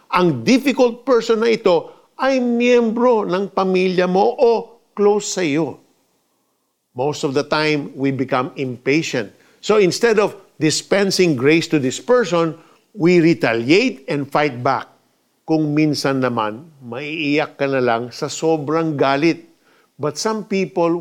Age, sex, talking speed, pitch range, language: 50-69, male, 135 wpm, 145-210 Hz, Filipino